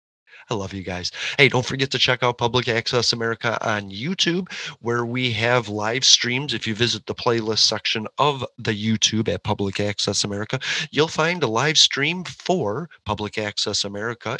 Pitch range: 110-135 Hz